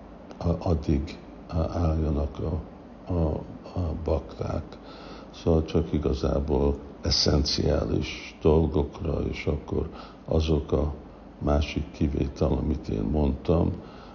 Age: 60-79